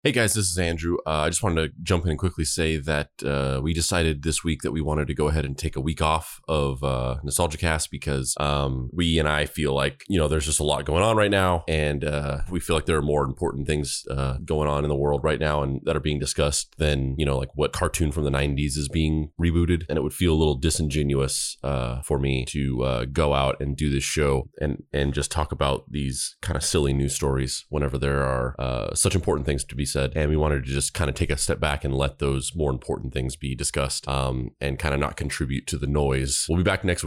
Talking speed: 255 wpm